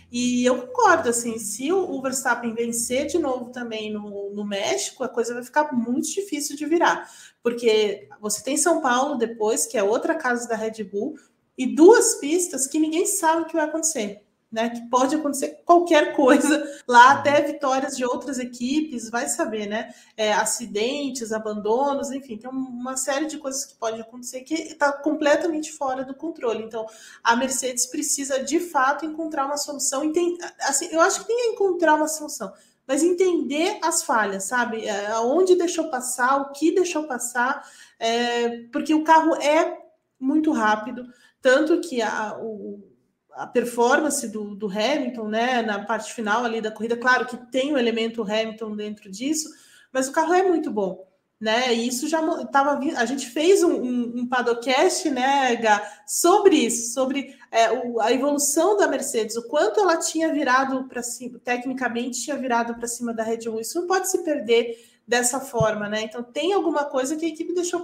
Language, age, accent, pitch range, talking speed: Portuguese, 30-49, Brazilian, 235-310 Hz, 180 wpm